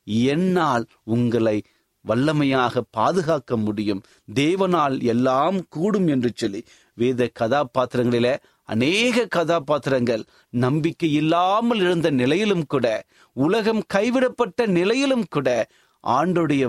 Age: 30-49